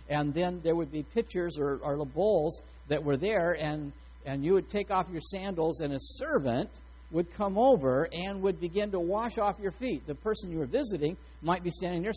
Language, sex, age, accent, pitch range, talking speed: English, male, 50-69, American, 160-230 Hz, 215 wpm